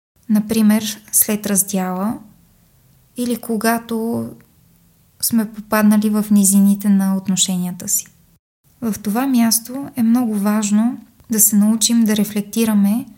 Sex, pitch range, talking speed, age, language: female, 200-225 Hz, 105 wpm, 20-39, Bulgarian